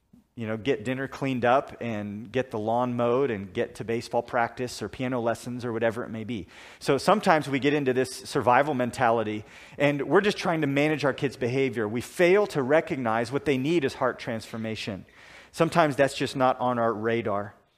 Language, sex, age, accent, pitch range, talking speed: English, male, 40-59, American, 120-150 Hz, 195 wpm